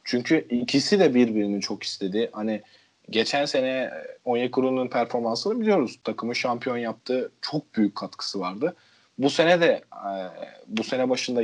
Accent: native